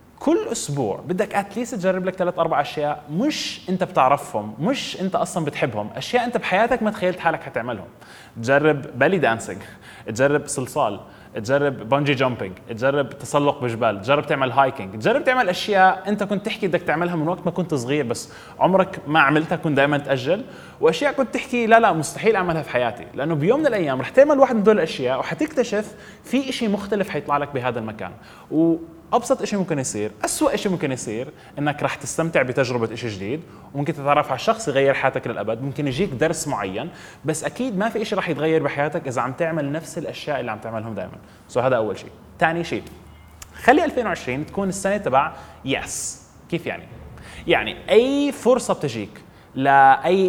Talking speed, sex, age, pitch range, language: 175 wpm, male, 20-39, 135-190 Hz, English